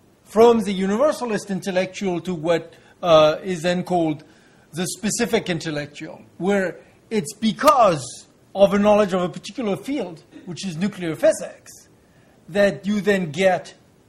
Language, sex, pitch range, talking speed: French, male, 170-215 Hz, 130 wpm